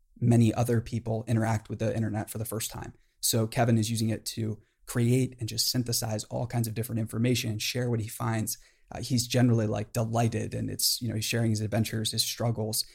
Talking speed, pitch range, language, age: 215 wpm, 115-125 Hz, English, 20-39